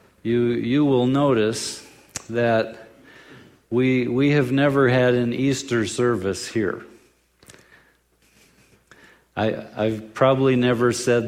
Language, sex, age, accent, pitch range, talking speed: English, male, 50-69, American, 105-125 Hz, 100 wpm